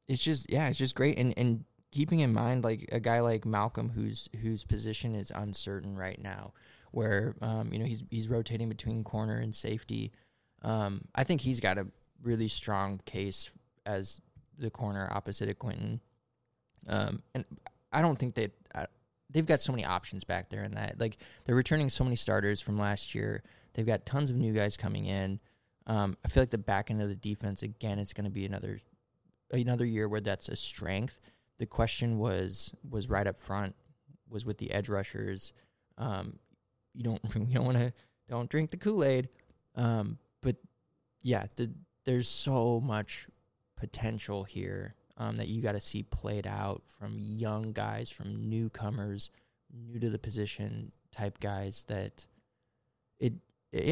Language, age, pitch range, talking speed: English, 20-39, 105-125 Hz, 175 wpm